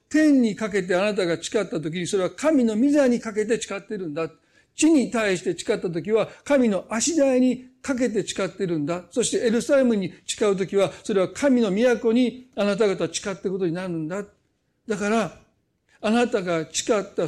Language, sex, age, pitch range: Japanese, male, 50-69, 175-250 Hz